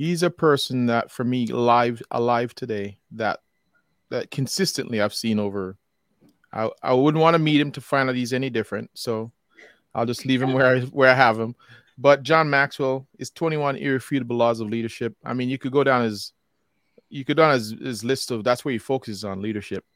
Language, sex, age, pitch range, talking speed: English, male, 20-39, 110-135 Hz, 205 wpm